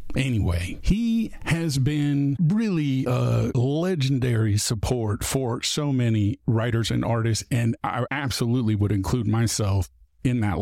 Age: 50-69